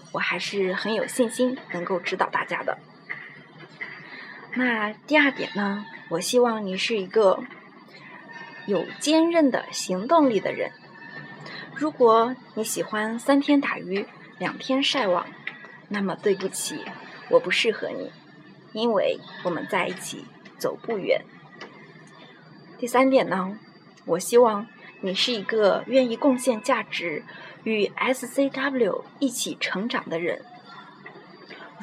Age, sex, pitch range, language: 20-39, female, 195-255 Hz, Chinese